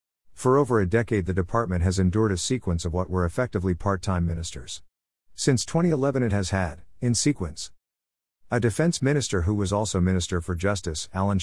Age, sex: 50-69, male